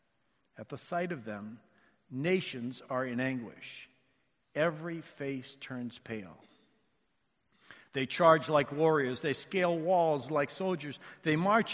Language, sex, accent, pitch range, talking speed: English, male, American, 130-170 Hz, 125 wpm